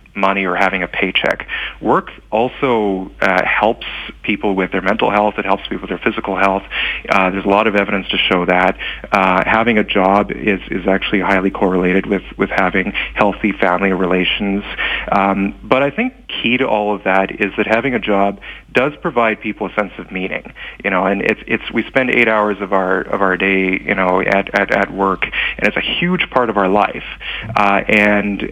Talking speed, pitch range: 200 wpm, 95-105 Hz